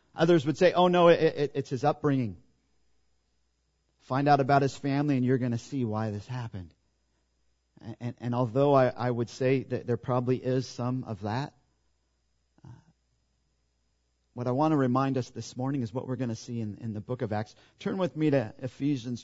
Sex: male